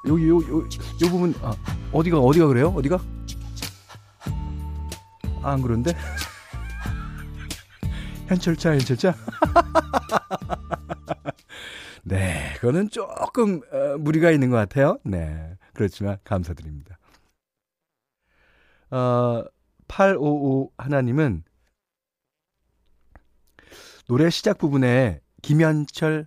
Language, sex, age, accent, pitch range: Korean, male, 40-59, native, 95-160 Hz